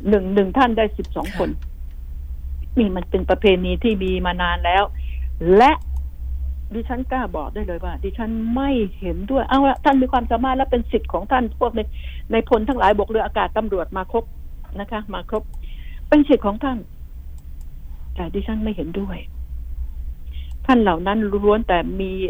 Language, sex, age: Thai, female, 60-79